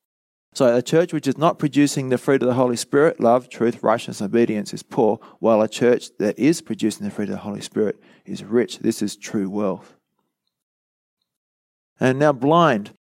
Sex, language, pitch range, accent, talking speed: male, English, 110-150 Hz, Australian, 185 wpm